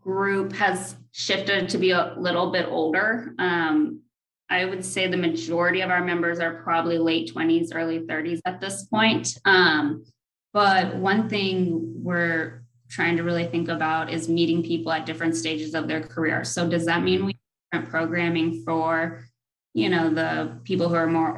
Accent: American